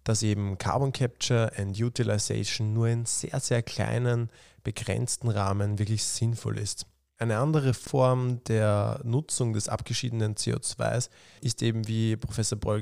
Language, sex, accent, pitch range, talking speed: German, male, German, 110-130 Hz, 135 wpm